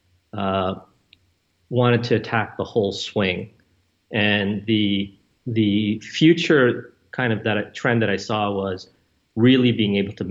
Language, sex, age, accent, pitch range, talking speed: English, male, 40-59, American, 100-115 Hz, 135 wpm